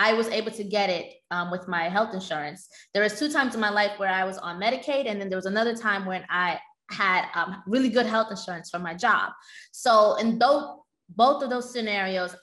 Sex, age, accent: female, 20-39, American